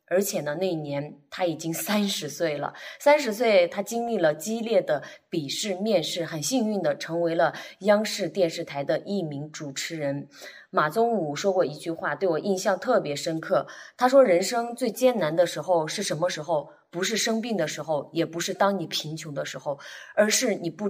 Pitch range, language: 160-205 Hz, Chinese